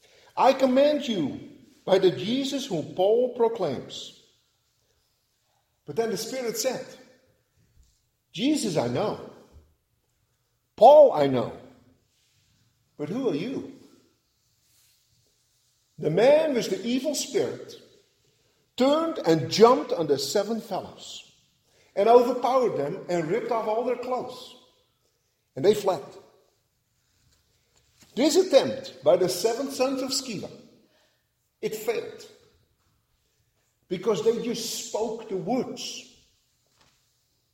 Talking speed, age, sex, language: 105 wpm, 50-69, male, English